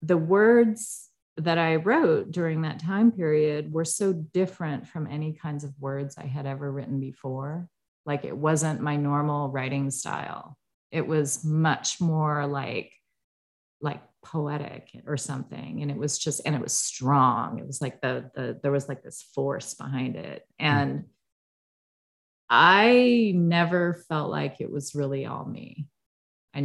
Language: English